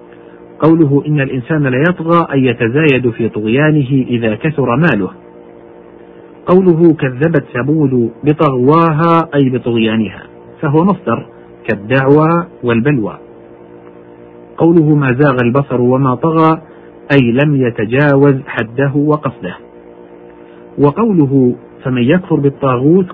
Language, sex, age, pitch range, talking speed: Arabic, male, 50-69, 115-155 Hz, 95 wpm